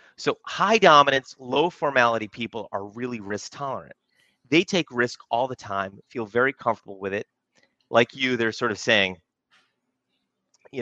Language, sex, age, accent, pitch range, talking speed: English, male, 30-49, American, 105-155 Hz, 155 wpm